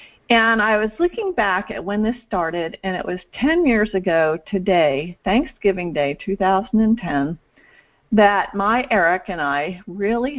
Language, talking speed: English, 145 wpm